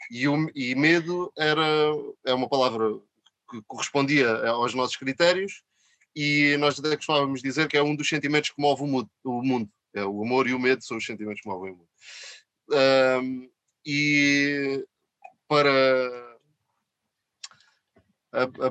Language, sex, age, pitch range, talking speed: Portuguese, male, 20-39, 120-155 Hz, 130 wpm